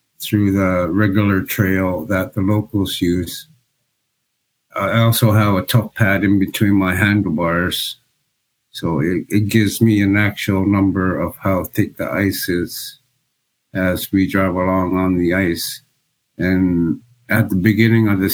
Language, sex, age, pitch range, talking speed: English, male, 50-69, 90-110 Hz, 145 wpm